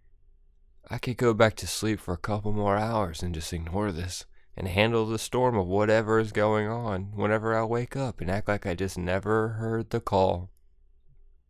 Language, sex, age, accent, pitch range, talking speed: English, male, 20-39, American, 90-125 Hz, 195 wpm